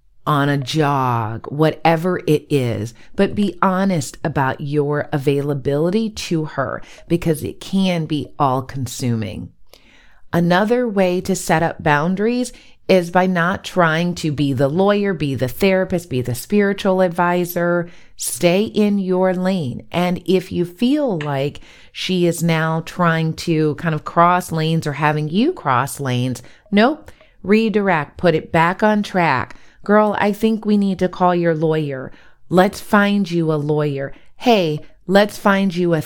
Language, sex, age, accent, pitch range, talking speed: English, female, 40-59, American, 150-185 Hz, 150 wpm